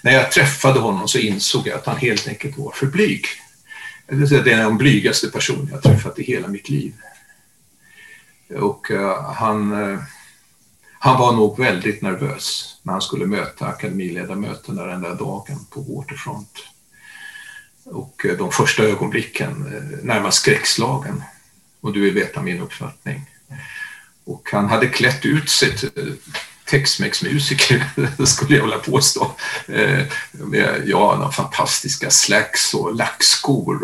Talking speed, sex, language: 135 wpm, male, Swedish